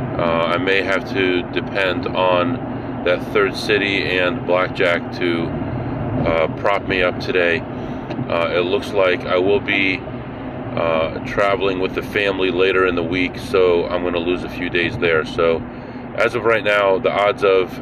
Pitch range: 90-125 Hz